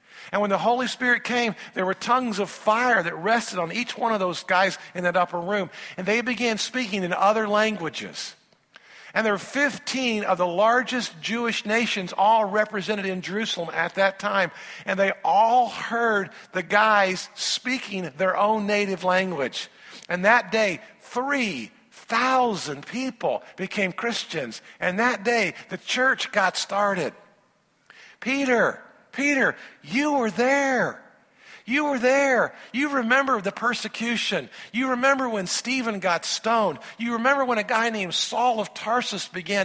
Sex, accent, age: male, American, 50-69